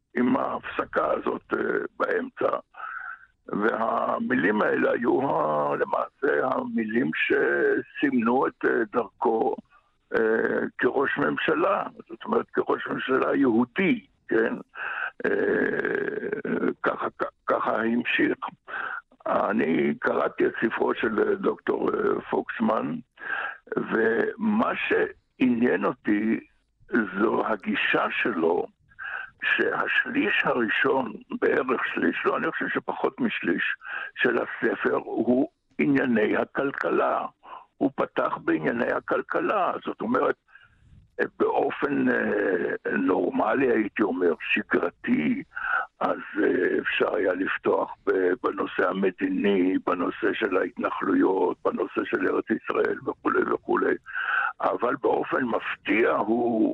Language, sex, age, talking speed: Hebrew, male, 60-79, 90 wpm